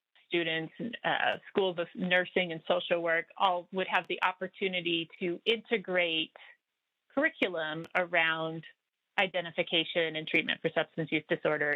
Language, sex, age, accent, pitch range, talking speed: English, female, 30-49, American, 165-210 Hz, 120 wpm